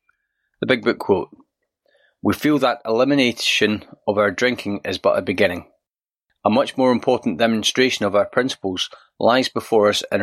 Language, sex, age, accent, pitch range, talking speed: English, male, 30-49, British, 95-115 Hz, 160 wpm